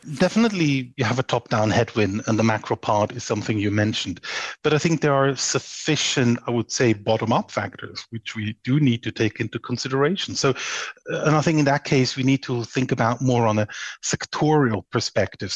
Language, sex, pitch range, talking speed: English, male, 120-145 Hz, 195 wpm